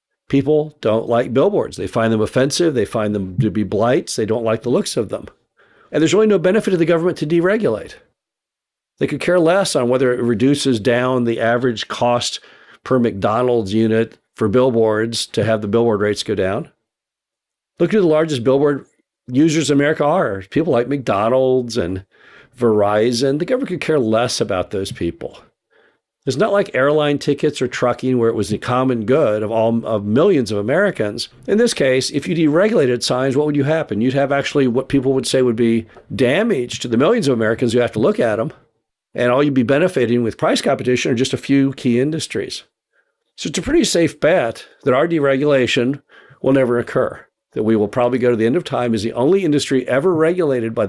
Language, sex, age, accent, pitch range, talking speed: English, male, 50-69, American, 115-145 Hz, 205 wpm